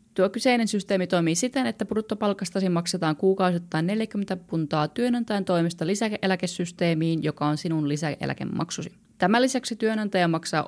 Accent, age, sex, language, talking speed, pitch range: native, 20-39, female, Finnish, 125 wpm, 155-200 Hz